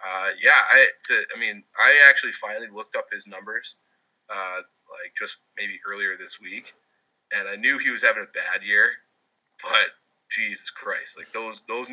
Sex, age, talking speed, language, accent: male, 20-39, 170 wpm, English, American